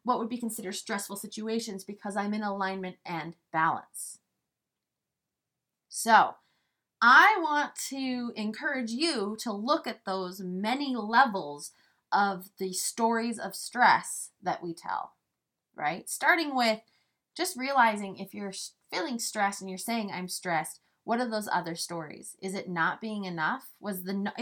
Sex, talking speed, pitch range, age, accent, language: female, 145 wpm, 185-235 Hz, 20-39, American, English